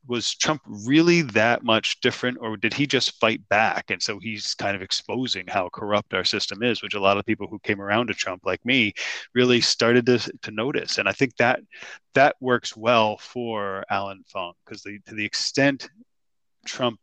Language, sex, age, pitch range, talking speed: English, male, 20-39, 105-125 Hz, 195 wpm